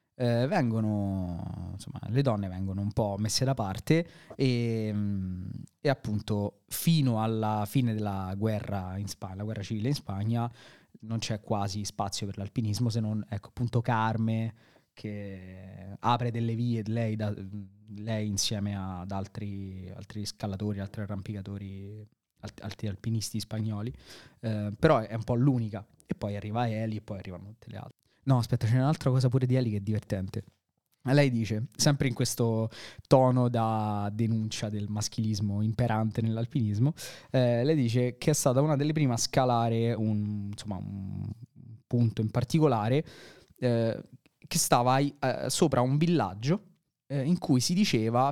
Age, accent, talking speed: 20-39, native, 155 wpm